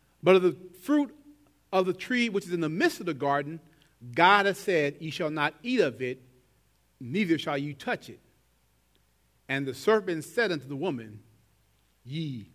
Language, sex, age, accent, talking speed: English, male, 40-59, American, 175 wpm